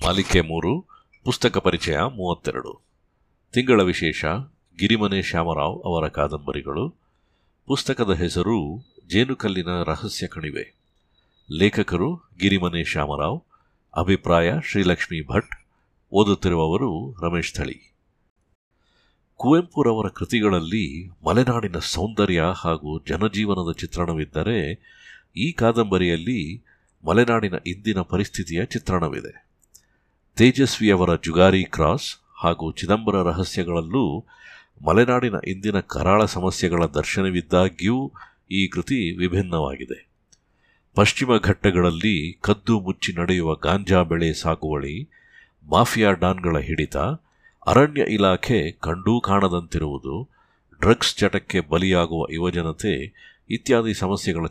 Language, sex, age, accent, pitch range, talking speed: Kannada, male, 50-69, native, 85-105 Hz, 80 wpm